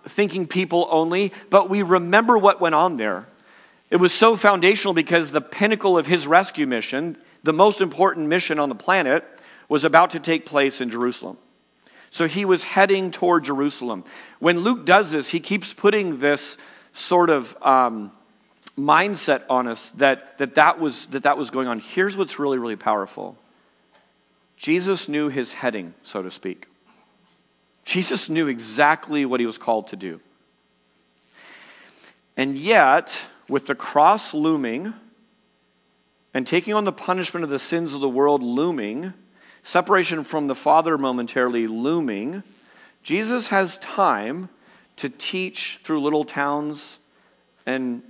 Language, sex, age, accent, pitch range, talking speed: English, male, 40-59, American, 125-185 Hz, 145 wpm